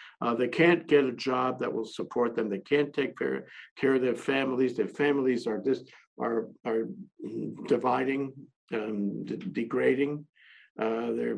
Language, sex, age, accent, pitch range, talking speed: English, male, 60-79, American, 130-150 Hz, 160 wpm